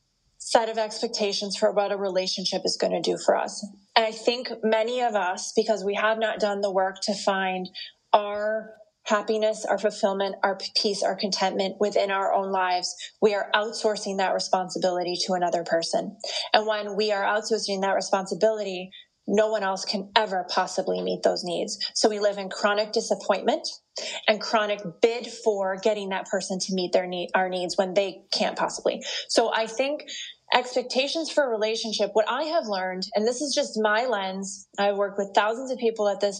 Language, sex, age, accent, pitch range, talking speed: English, female, 20-39, American, 195-230 Hz, 185 wpm